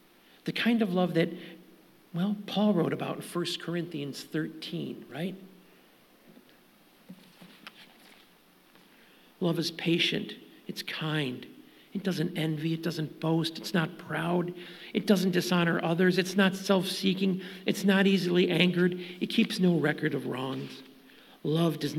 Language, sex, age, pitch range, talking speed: English, male, 50-69, 155-185 Hz, 130 wpm